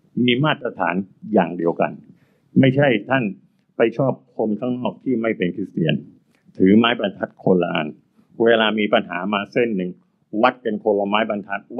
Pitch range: 105-155 Hz